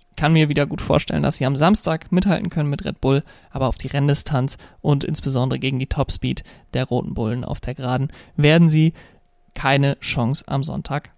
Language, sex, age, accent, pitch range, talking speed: German, male, 30-49, German, 145-175 Hz, 190 wpm